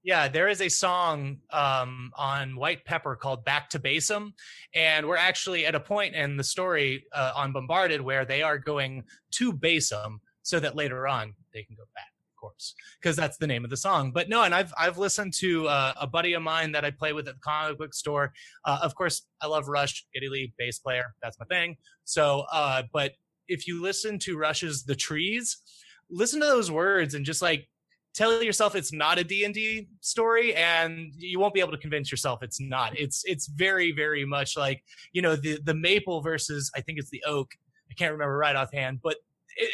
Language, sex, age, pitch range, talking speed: English, male, 20-39, 140-175 Hz, 215 wpm